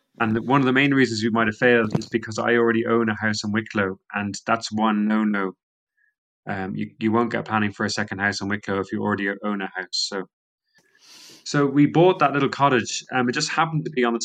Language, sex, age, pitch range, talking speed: English, male, 20-39, 110-130 Hz, 230 wpm